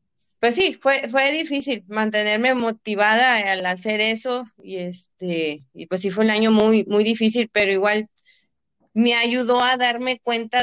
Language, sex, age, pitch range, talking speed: Spanish, female, 30-49, 195-245 Hz, 160 wpm